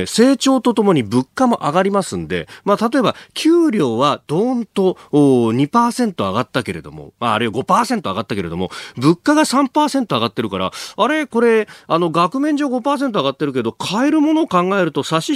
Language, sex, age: Japanese, male, 40-59